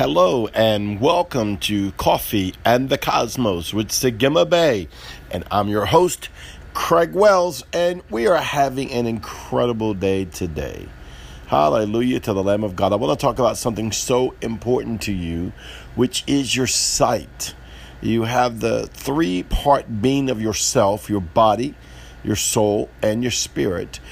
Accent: American